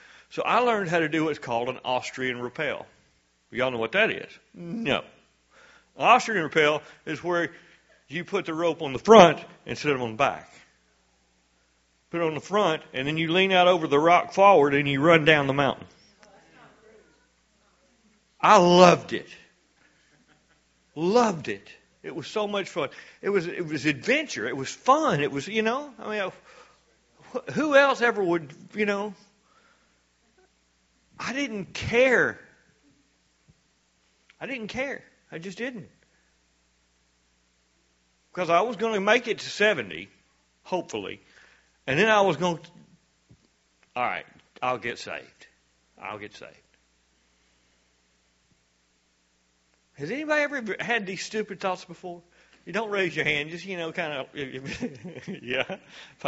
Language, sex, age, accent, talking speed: English, male, 50-69, American, 145 wpm